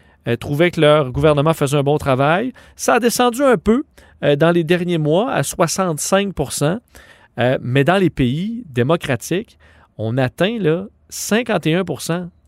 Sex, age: male, 40-59